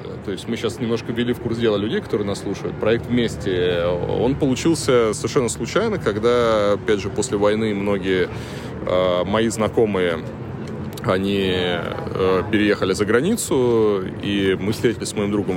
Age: 20-39